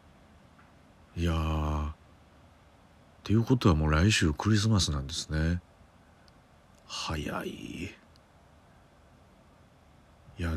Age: 40-59